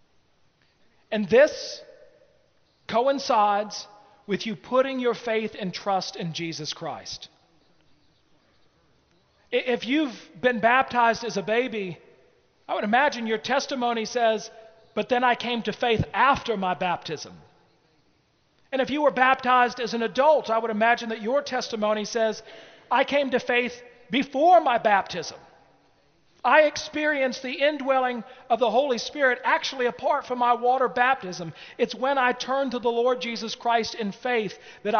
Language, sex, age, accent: English, male, 40-59, American